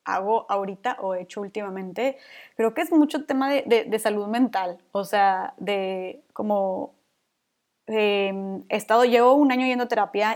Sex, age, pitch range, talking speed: female, 20-39, 205-250 Hz, 170 wpm